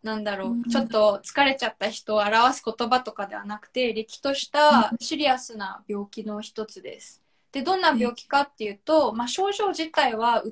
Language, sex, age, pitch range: Japanese, female, 20-39, 215-280 Hz